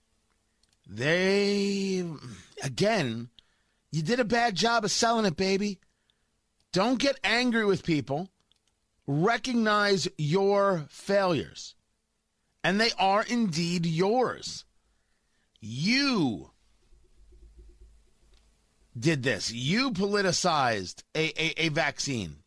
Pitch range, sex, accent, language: 135-215 Hz, male, American, English